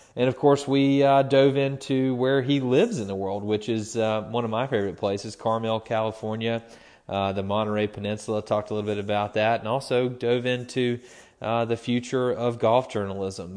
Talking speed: 190 wpm